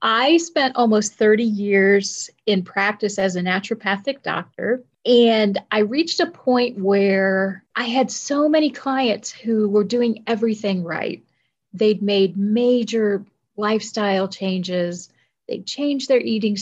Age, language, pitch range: 40-59, English, 190-235 Hz